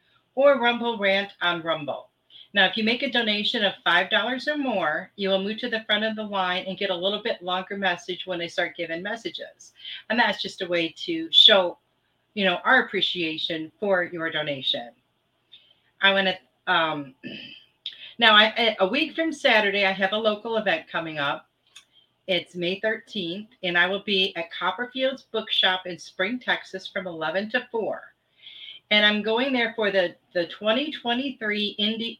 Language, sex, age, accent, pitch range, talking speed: English, female, 40-59, American, 175-220 Hz, 170 wpm